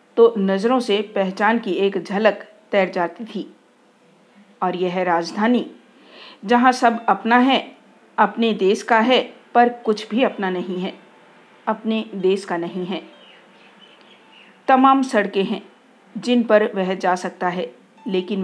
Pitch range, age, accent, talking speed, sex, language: 185-235 Hz, 50-69, native, 135 wpm, female, Hindi